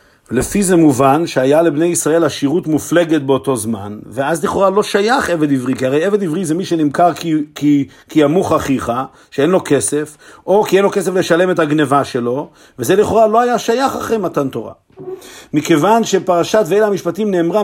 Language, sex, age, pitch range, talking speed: Hebrew, male, 50-69, 155-205 Hz, 175 wpm